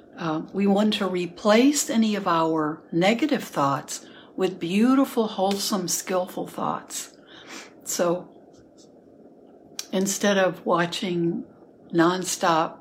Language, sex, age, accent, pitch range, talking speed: English, female, 60-79, American, 165-215 Hz, 95 wpm